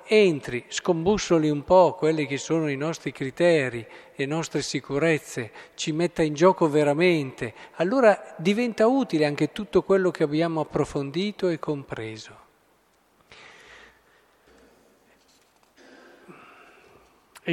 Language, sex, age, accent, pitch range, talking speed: Italian, male, 40-59, native, 125-155 Hz, 105 wpm